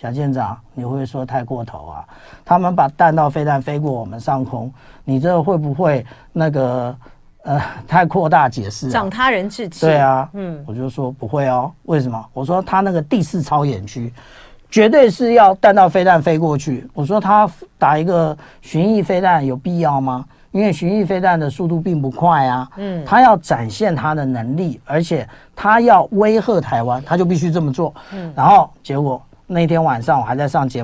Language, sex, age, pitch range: Chinese, male, 50-69, 135-190 Hz